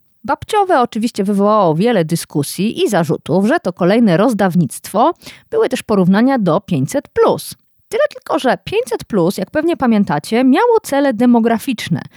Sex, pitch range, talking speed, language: female, 180-270 Hz, 130 wpm, Polish